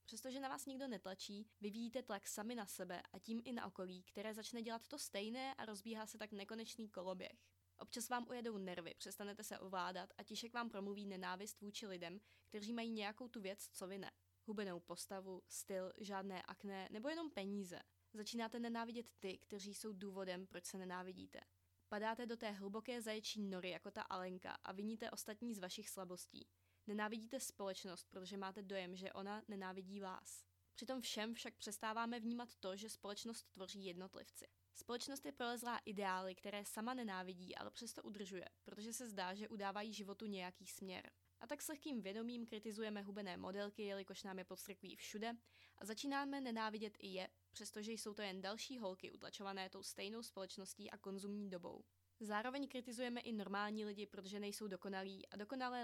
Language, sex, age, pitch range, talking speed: Czech, female, 20-39, 190-225 Hz, 170 wpm